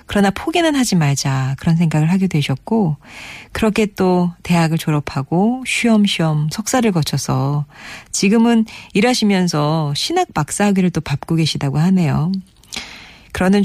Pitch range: 150-190 Hz